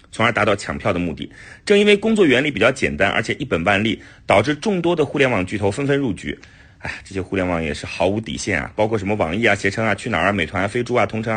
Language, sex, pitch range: Chinese, male, 100-140 Hz